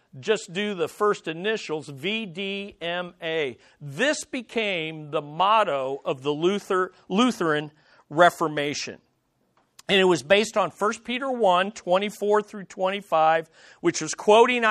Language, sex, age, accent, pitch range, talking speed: English, male, 50-69, American, 155-205 Hz, 120 wpm